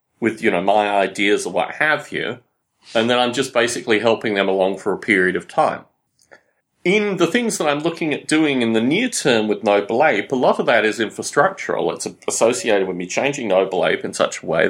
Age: 30-49